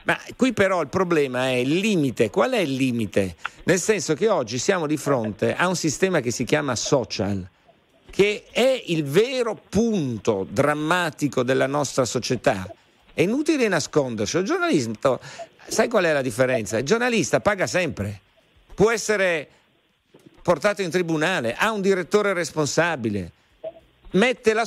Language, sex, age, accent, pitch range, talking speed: Italian, male, 50-69, native, 140-225 Hz, 145 wpm